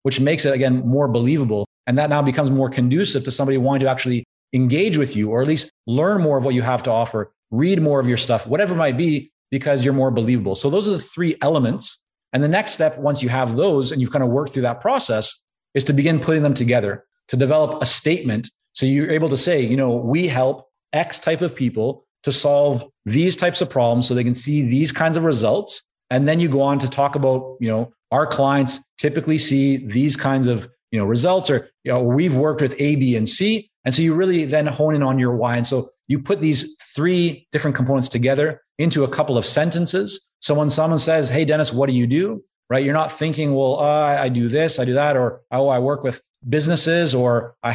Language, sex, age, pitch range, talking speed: English, male, 30-49, 125-155 Hz, 230 wpm